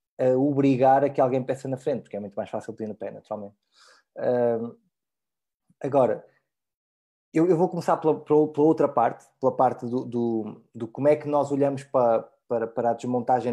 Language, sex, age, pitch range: Portuguese, male, 20-39, 125-155 Hz